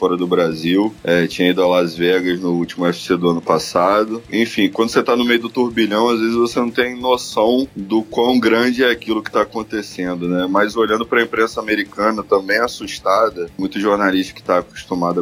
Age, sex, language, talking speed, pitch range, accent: 20-39, male, Portuguese, 195 wpm, 95-115 Hz, Brazilian